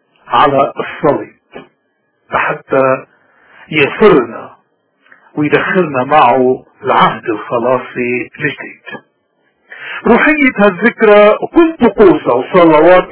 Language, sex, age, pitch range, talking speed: Arabic, male, 50-69, 150-215 Hz, 65 wpm